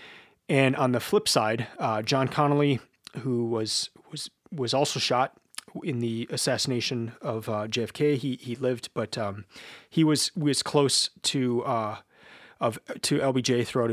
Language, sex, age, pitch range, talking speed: English, male, 30-49, 120-150 Hz, 150 wpm